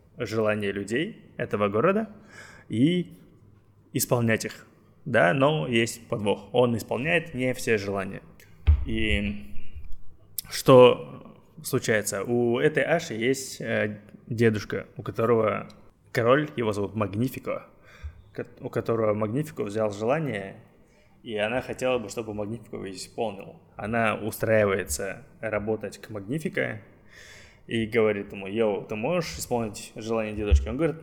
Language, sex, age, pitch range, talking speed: Russian, male, 20-39, 105-125 Hz, 110 wpm